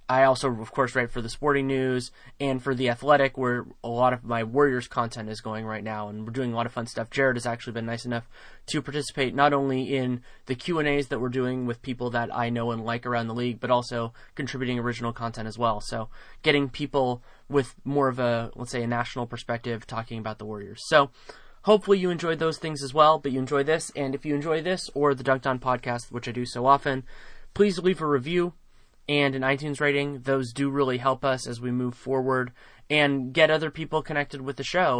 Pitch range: 120-145 Hz